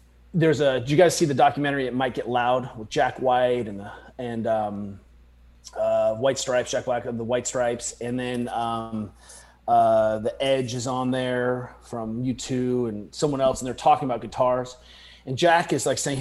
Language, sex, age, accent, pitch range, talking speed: English, male, 30-49, American, 120-150 Hz, 190 wpm